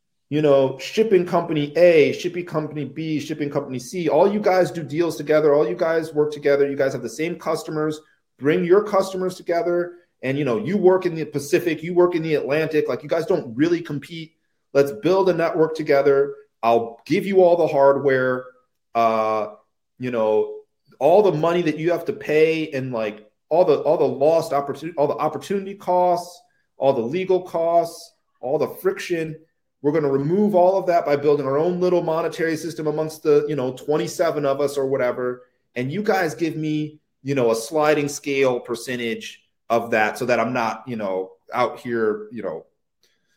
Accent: American